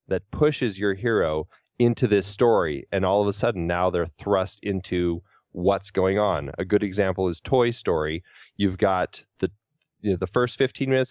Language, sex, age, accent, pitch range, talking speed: English, male, 30-49, American, 90-110 Hz, 185 wpm